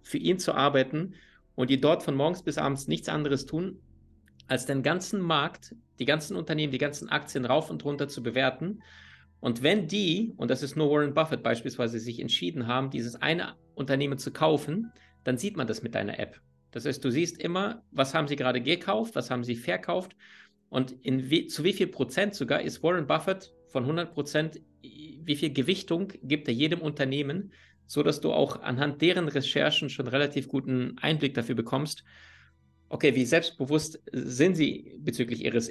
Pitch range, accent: 125-155 Hz, German